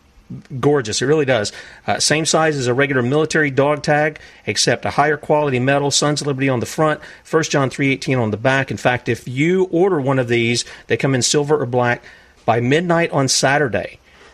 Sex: male